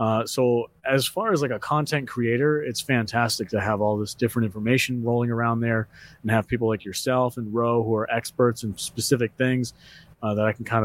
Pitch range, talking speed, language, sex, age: 110-125 Hz, 210 wpm, English, male, 30-49